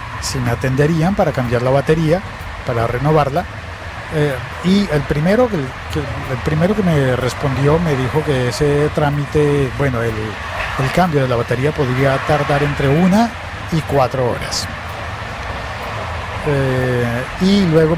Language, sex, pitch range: Spanish, male, 115-155 Hz